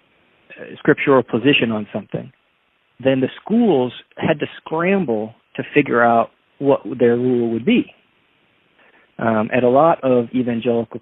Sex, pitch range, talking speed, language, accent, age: male, 115-135 Hz, 130 wpm, English, American, 40-59